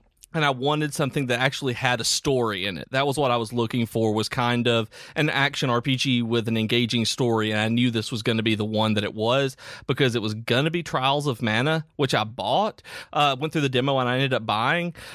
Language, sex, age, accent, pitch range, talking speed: English, male, 30-49, American, 110-140 Hz, 250 wpm